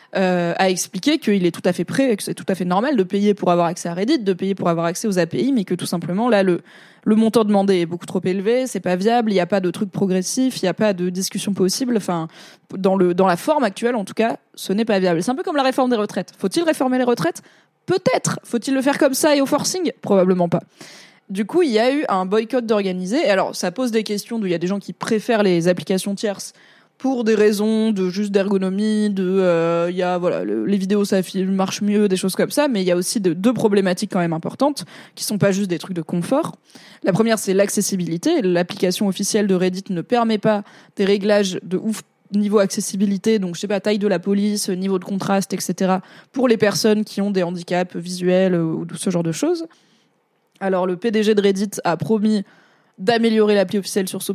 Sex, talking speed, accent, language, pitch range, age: female, 240 wpm, French, French, 185-220 Hz, 20-39